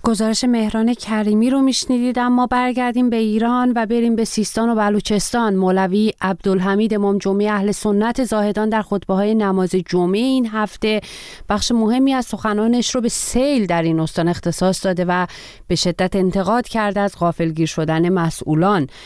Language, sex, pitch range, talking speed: Persian, female, 185-225 Hz, 150 wpm